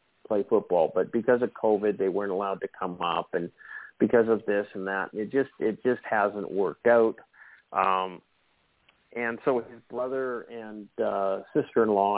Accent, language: American, English